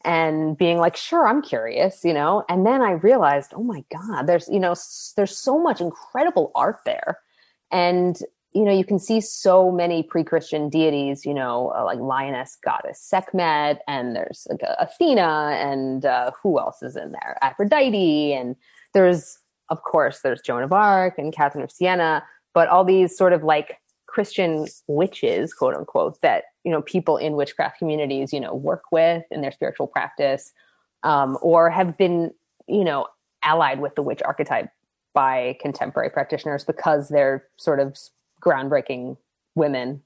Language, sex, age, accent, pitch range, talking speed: English, female, 30-49, American, 150-200 Hz, 160 wpm